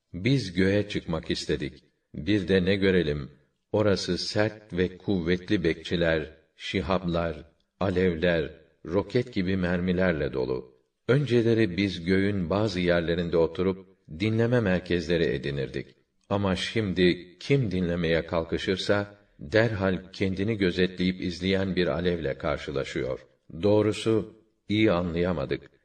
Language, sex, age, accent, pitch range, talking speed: Turkish, male, 50-69, native, 90-100 Hz, 100 wpm